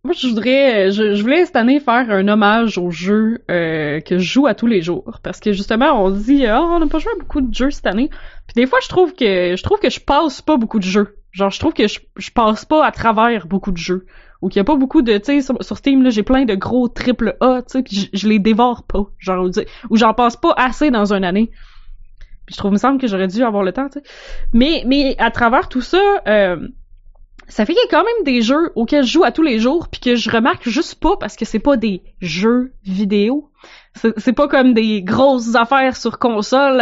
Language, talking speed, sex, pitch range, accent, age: French, 265 wpm, female, 205-270 Hz, Canadian, 20-39